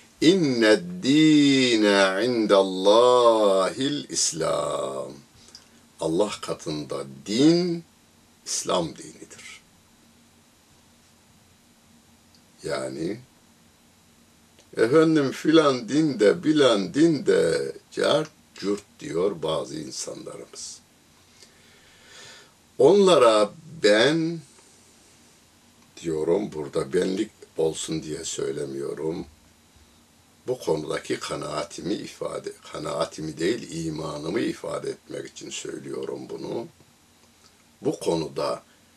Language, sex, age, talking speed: Turkish, male, 60-79, 65 wpm